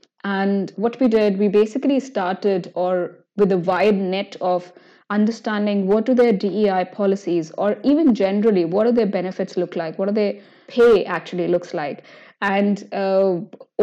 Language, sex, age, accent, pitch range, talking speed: English, female, 20-39, Indian, 180-210 Hz, 160 wpm